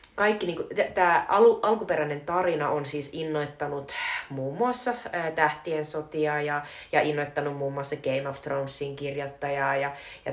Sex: female